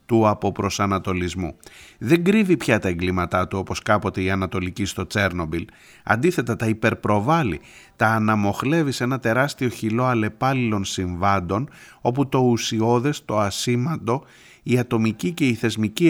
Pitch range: 95-125 Hz